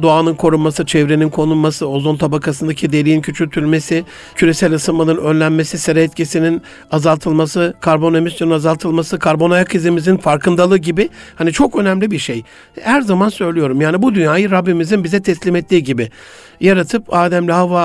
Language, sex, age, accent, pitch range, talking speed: Turkish, male, 60-79, native, 155-190 Hz, 140 wpm